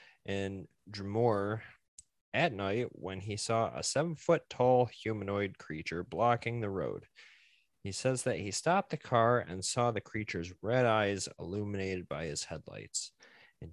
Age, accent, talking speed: 20-39, American, 150 wpm